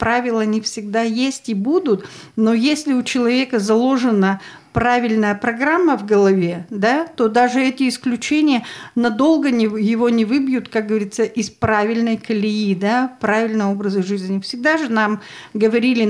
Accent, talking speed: native, 140 wpm